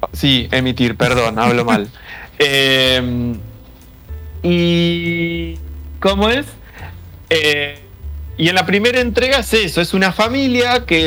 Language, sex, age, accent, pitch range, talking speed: Spanish, male, 30-49, Argentinian, 125-175 Hz, 115 wpm